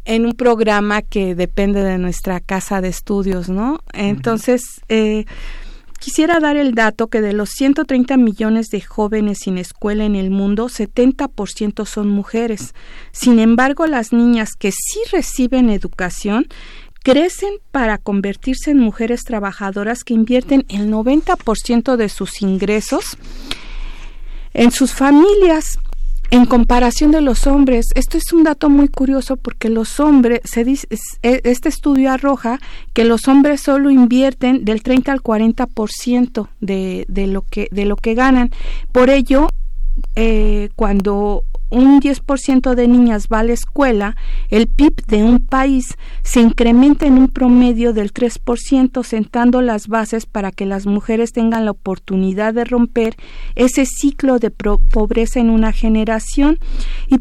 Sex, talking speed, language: female, 135 wpm, Spanish